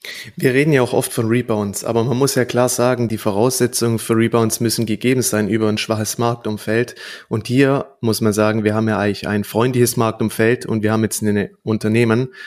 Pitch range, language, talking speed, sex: 110-125 Hz, German, 200 wpm, male